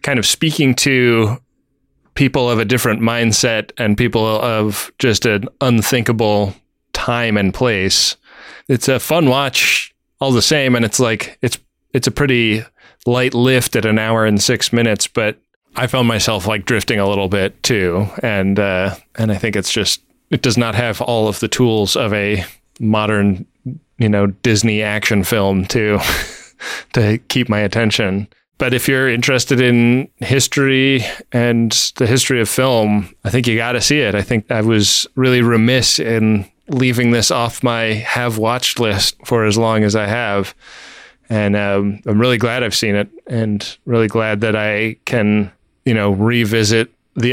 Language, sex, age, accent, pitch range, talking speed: English, male, 20-39, American, 105-125 Hz, 170 wpm